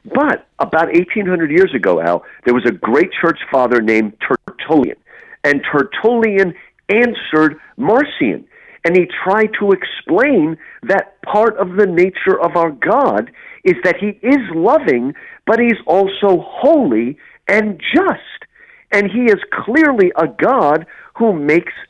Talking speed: 135 wpm